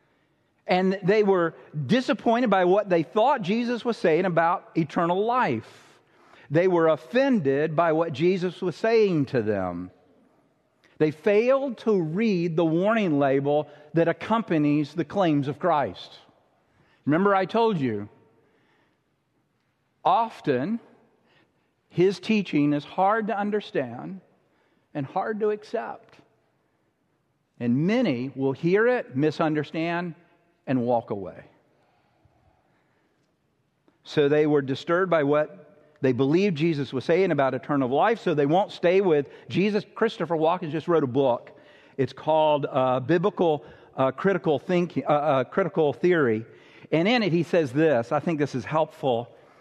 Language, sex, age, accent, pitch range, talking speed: English, male, 50-69, American, 145-195 Hz, 130 wpm